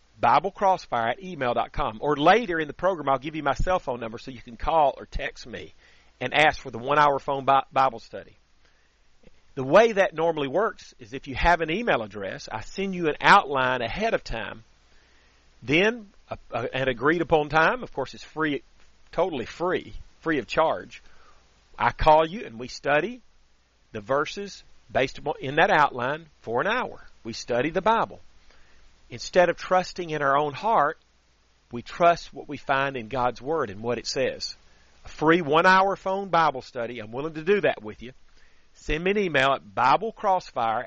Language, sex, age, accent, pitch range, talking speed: English, male, 40-59, American, 115-170 Hz, 180 wpm